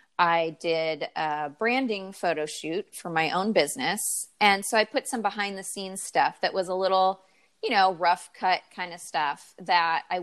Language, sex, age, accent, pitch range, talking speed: English, female, 30-49, American, 160-195 Hz, 190 wpm